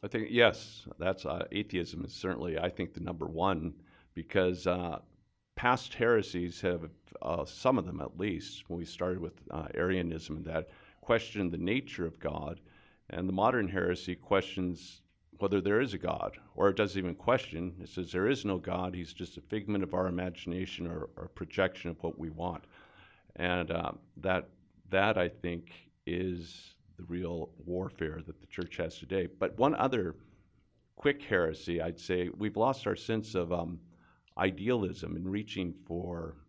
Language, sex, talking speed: English, male, 170 wpm